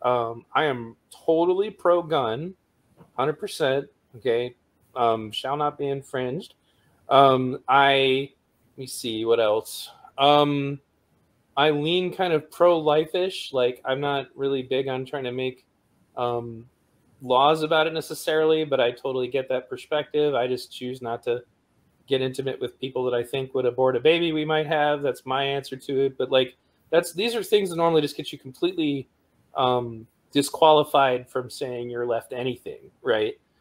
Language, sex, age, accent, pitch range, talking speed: English, male, 20-39, American, 125-160 Hz, 160 wpm